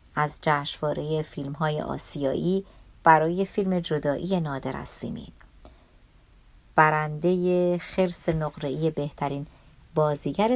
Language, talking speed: Persian, 85 wpm